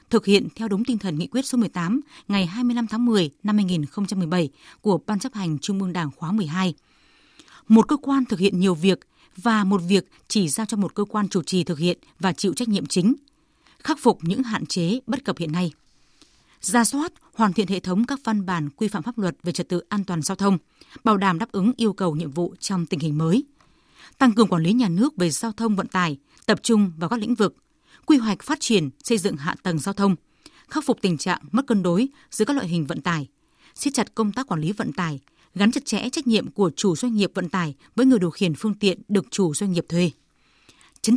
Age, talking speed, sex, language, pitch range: 20-39, 235 wpm, female, Vietnamese, 180-230 Hz